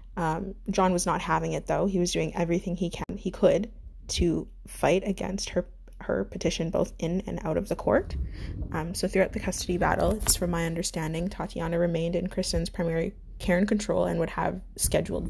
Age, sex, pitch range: 20-39, female, 165-185 Hz